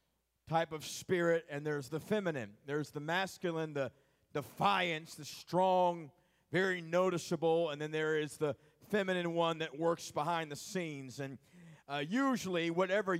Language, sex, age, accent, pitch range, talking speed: English, male, 40-59, American, 160-210 Hz, 150 wpm